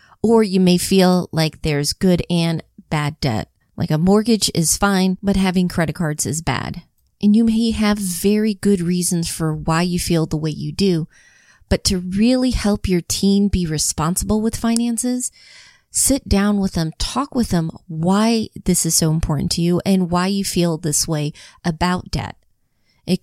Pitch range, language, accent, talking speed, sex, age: 165-200 Hz, English, American, 180 wpm, female, 30-49